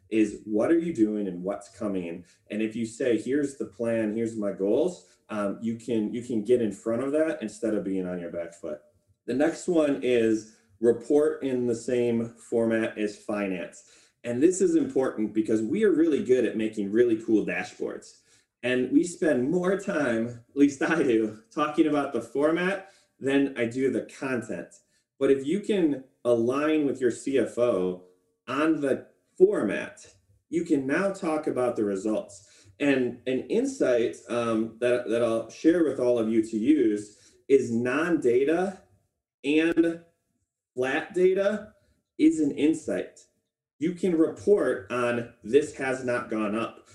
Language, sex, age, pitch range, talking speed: English, male, 30-49, 110-155 Hz, 160 wpm